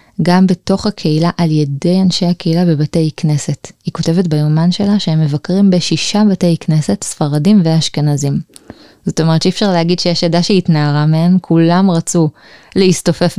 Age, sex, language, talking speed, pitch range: 20-39, female, Hebrew, 150 wpm, 155-185 Hz